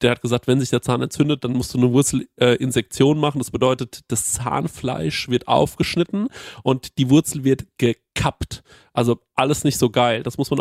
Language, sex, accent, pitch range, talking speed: German, male, German, 120-140 Hz, 190 wpm